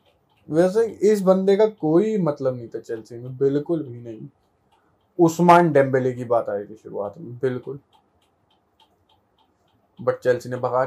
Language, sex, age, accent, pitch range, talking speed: Hindi, male, 20-39, native, 135-180 Hz, 145 wpm